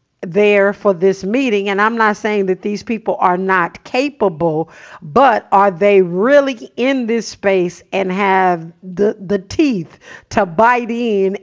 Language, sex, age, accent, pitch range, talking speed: English, female, 50-69, American, 195-225 Hz, 150 wpm